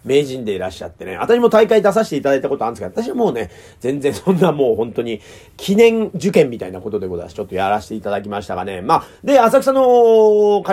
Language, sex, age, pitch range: Japanese, male, 40-59, 145-215 Hz